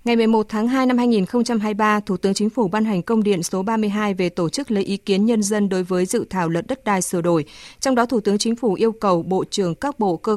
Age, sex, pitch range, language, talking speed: 20-39, female, 175-220 Hz, Vietnamese, 265 wpm